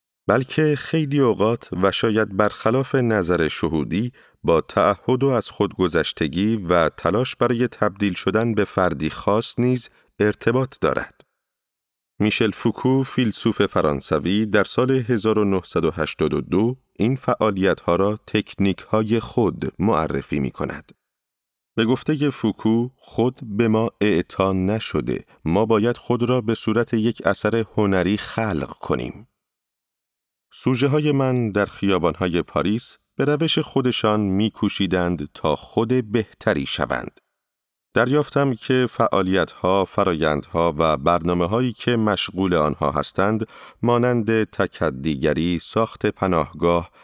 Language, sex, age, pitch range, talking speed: Persian, male, 40-59, 95-120 Hz, 115 wpm